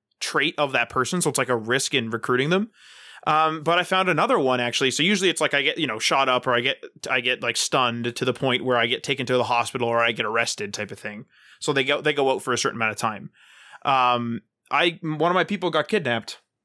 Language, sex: English, male